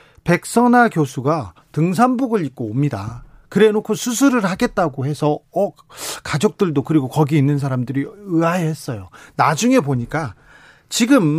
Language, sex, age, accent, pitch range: Korean, male, 40-59, native, 140-215 Hz